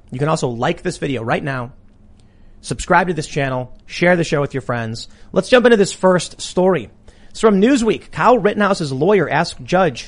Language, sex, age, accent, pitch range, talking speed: English, male, 30-49, American, 130-185 Hz, 190 wpm